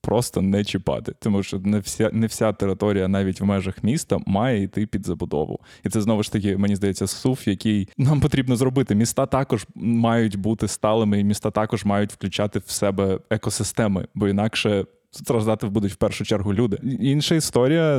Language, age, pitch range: Ukrainian, 20-39, 105-130 Hz